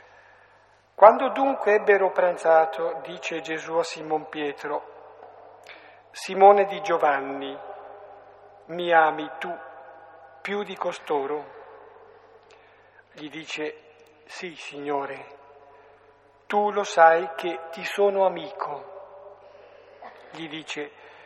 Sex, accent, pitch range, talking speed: male, native, 155-200 Hz, 90 wpm